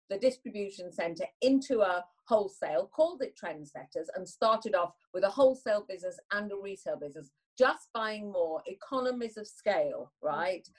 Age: 40-59